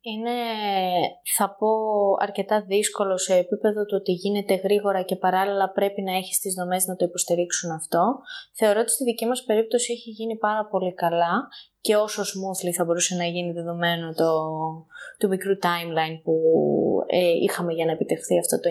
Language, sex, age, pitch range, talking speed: Greek, female, 20-39, 175-235 Hz, 170 wpm